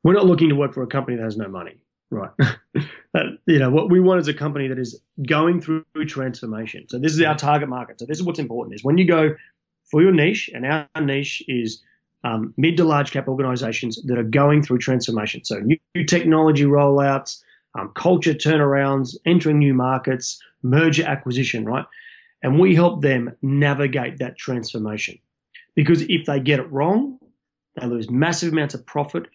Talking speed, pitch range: 185 wpm, 130-160 Hz